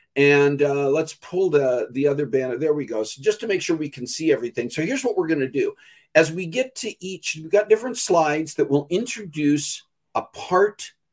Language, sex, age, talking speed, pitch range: English, male, 50-69, 215 wpm, 140-200 Hz